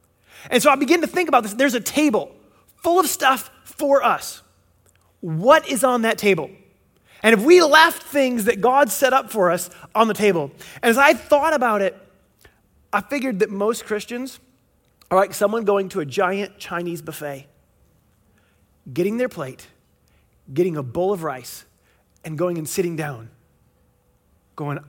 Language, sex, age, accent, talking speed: English, male, 30-49, American, 165 wpm